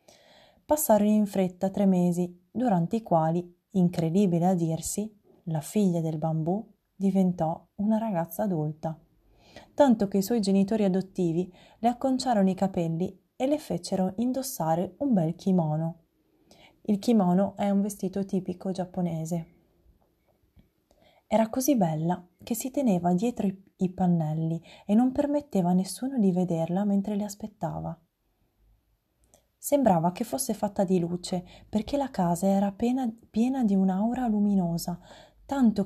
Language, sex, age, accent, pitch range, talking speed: Italian, female, 20-39, native, 175-220 Hz, 130 wpm